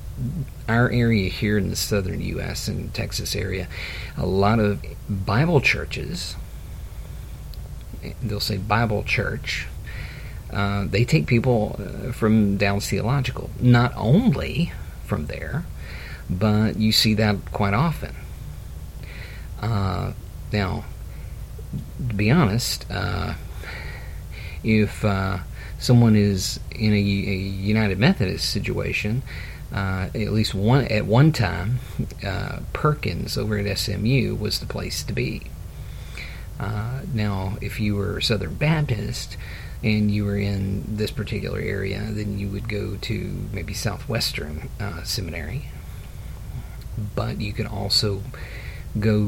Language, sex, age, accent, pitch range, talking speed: English, male, 50-69, American, 95-115 Hz, 120 wpm